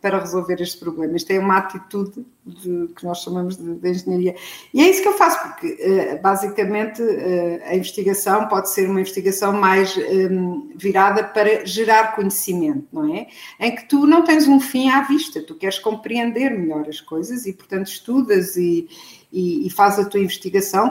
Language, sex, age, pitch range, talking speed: Portuguese, female, 50-69, 185-245 Hz, 175 wpm